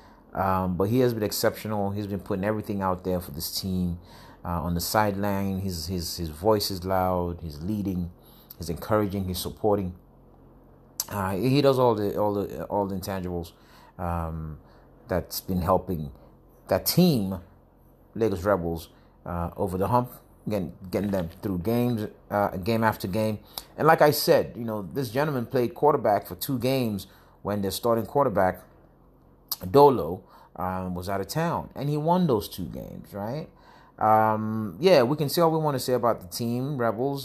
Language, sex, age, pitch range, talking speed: English, male, 30-49, 90-110 Hz, 170 wpm